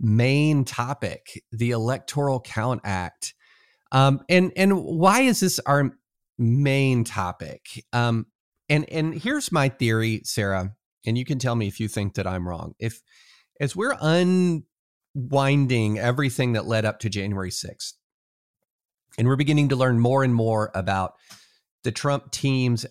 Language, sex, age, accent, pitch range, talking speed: English, male, 40-59, American, 110-140 Hz, 145 wpm